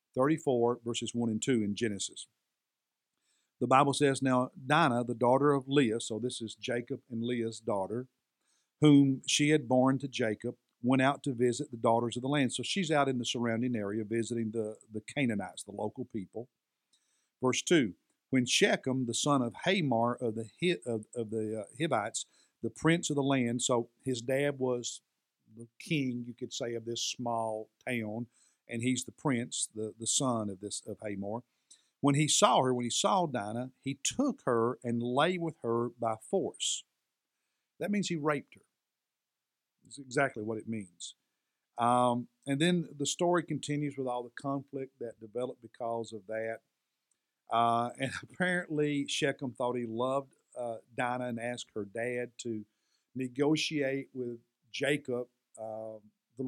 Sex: male